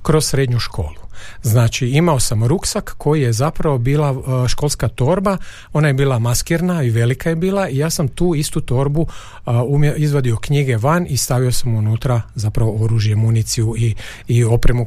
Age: 40-59